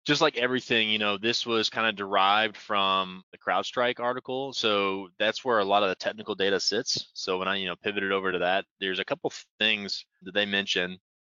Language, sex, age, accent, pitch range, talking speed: English, male, 20-39, American, 90-105 Hz, 215 wpm